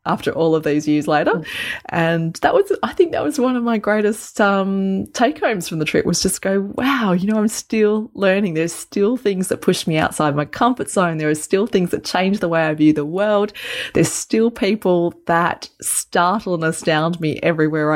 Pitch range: 155-230 Hz